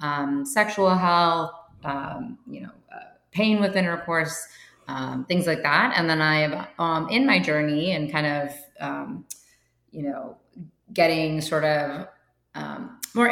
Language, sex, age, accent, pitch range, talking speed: English, female, 20-39, American, 145-170 Hz, 150 wpm